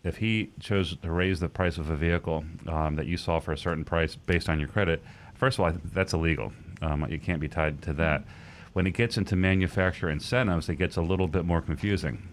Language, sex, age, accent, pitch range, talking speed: English, male, 40-59, American, 80-95 Hz, 230 wpm